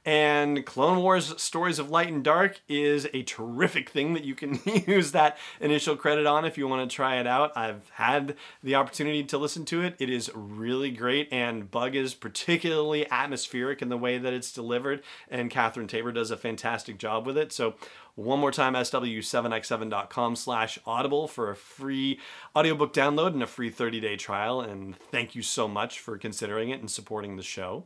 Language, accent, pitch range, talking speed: English, American, 115-150 Hz, 185 wpm